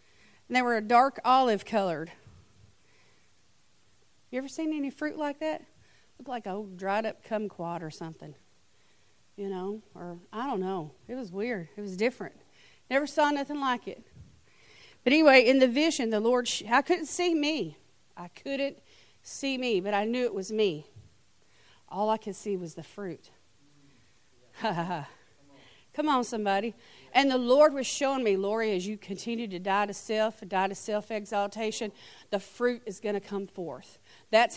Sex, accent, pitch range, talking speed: female, American, 200-250 Hz, 165 wpm